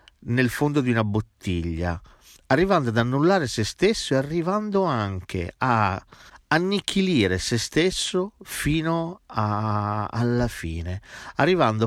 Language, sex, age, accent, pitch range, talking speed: Italian, male, 50-69, native, 95-130 Hz, 110 wpm